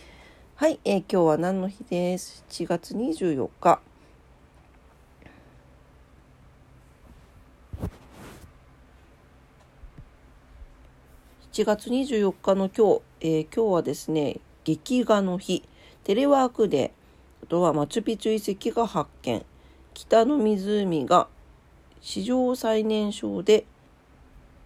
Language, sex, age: Japanese, female, 50-69